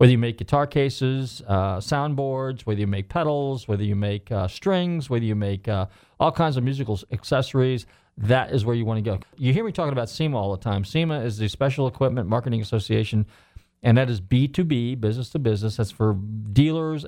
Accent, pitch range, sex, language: American, 100-130 Hz, male, English